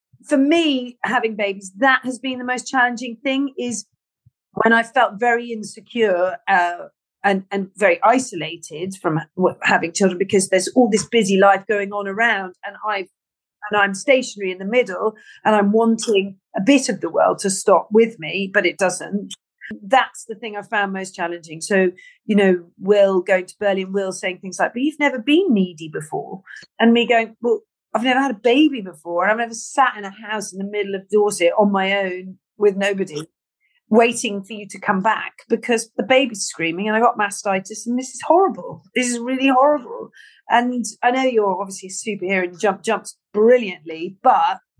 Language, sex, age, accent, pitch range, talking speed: English, female, 40-59, British, 195-245 Hz, 190 wpm